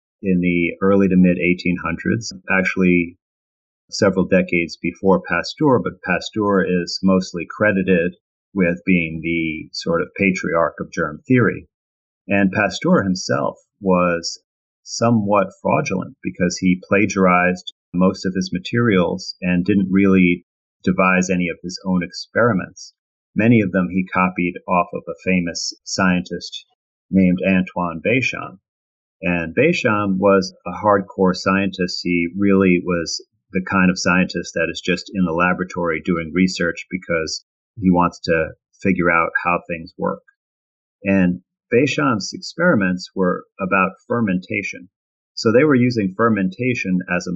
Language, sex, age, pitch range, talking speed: English, male, 40-59, 85-95 Hz, 130 wpm